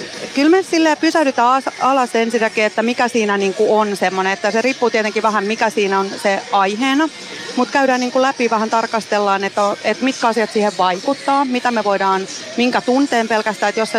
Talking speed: 165 wpm